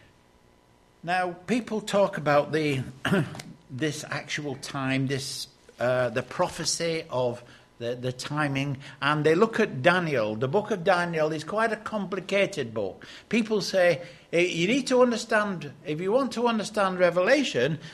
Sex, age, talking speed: male, 60-79, 145 wpm